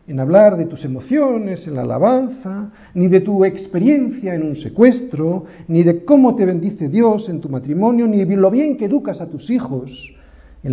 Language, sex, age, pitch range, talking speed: Spanish, male, 50-69, 140-235 Hz, 190 wpm